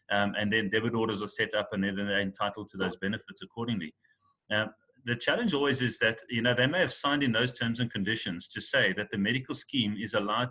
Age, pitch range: 30-49, 105-130 Hz